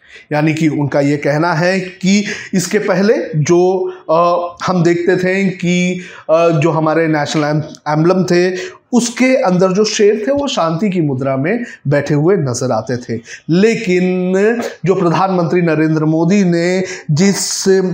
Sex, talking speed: male, 145 wpm